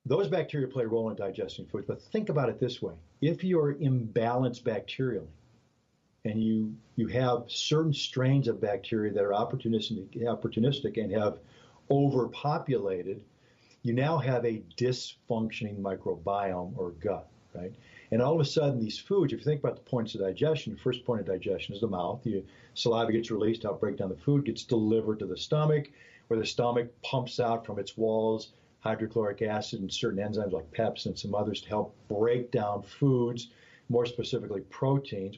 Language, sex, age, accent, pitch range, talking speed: English, male, 50-69, American, 105-125 Hz, 175 wpm